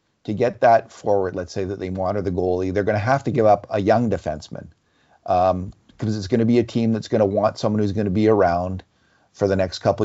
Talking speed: 265 wpm